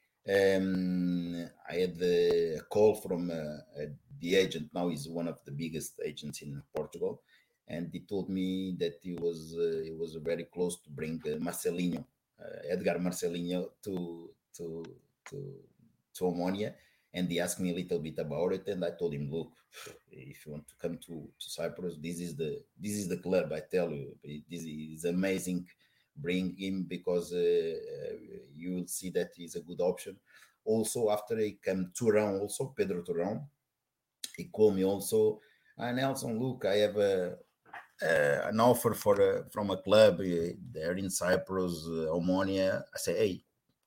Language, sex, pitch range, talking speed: English, male, 85-105 Hz, 175 wpm